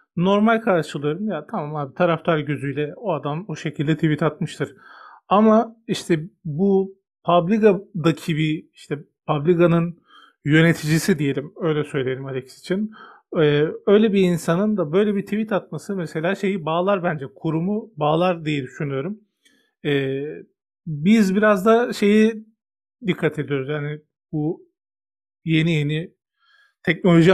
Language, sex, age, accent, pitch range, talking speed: Turkish, male, 40-59, native, 150-195 Hz, 120 wpm